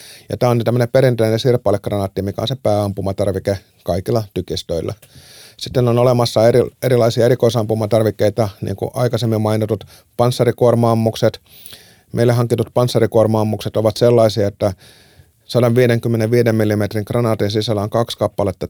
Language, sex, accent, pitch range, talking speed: Finnish, male, native, 105-120 Hz, 115 wpm